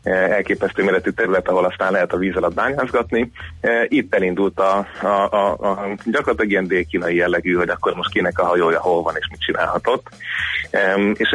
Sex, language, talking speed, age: male, Hungarian, 170 wpm, 30-49